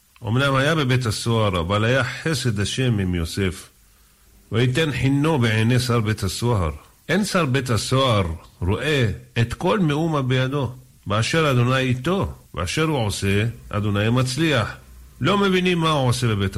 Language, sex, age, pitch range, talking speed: Hebrew, male, 50-69, 110-150 Hz, 140 wpm